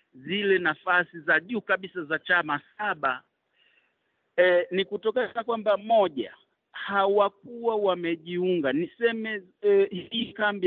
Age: 50-69